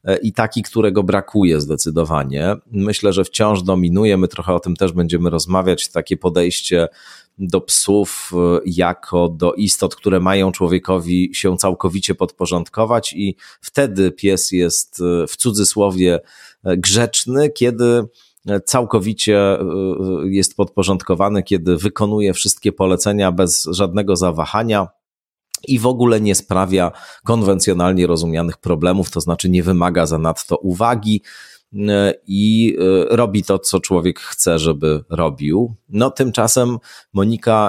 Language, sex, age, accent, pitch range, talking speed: Polish, male, 30-49, native, 85-105 Hz, 115 wpm